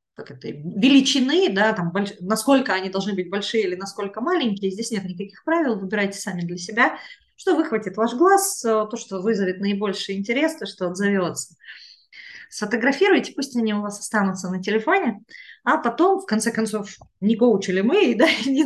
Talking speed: 165 wpm